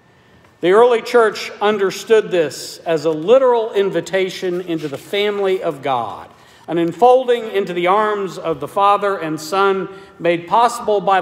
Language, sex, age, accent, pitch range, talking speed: English, male, 50-69, American, 160-210 Hz, 145 wpm